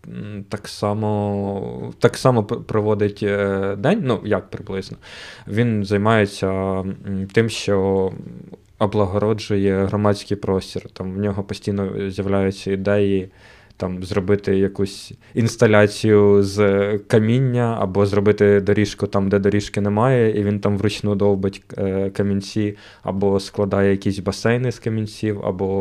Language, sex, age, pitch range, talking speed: Ukrainian, male, 20-39, 100-110 Hz, 105 wpm